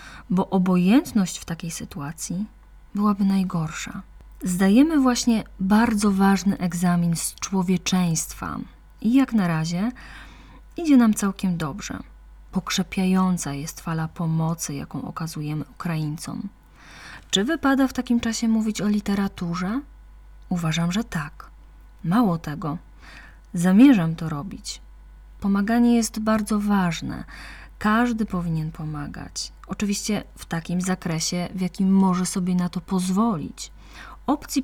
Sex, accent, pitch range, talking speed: female, native, 170-215 Hz, 110 wpm